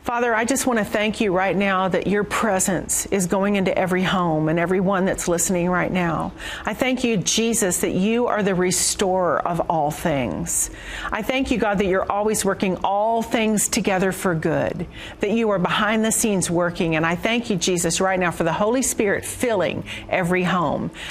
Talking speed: 195 wpm